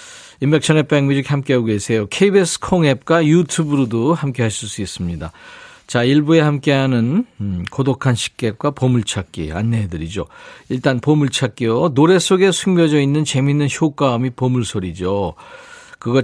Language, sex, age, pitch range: Korean, male, 40-59, 110-155 Hz